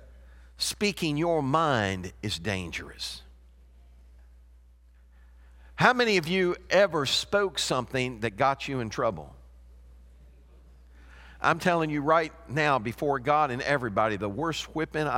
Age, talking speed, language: 50-69, 115 wpm, English